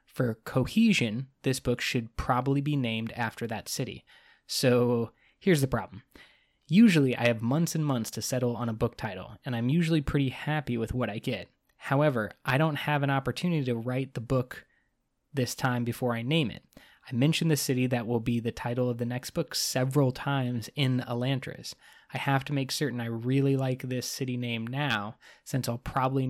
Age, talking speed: 20-39, 190 wpm